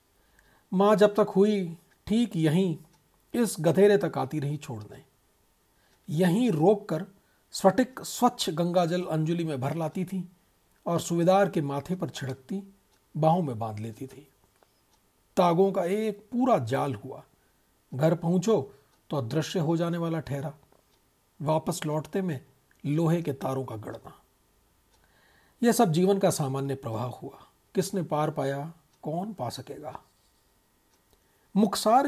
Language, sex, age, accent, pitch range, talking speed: Hindi, male, 40-59, native, 140-190 Hz, 130 wpm